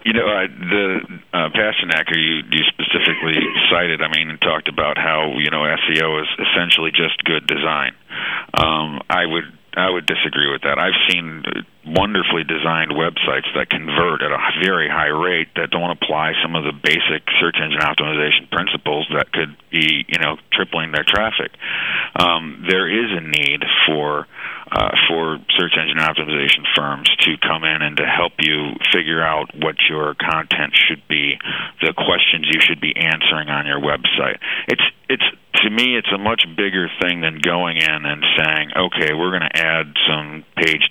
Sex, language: male, English